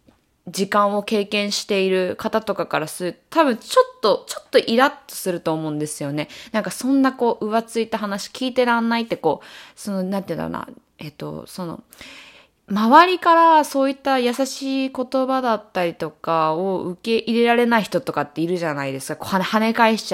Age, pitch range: 20-39, 180-280 Hz